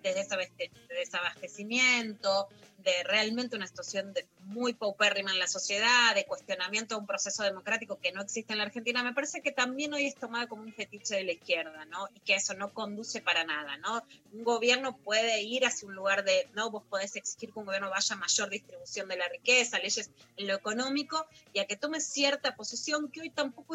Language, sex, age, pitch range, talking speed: Spanish, female, 20-39, 200-275 Hz, 205 wpm